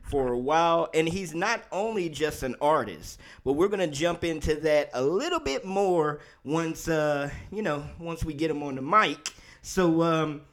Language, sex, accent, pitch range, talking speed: English, male, American, 140-170 Hz, 195 wpm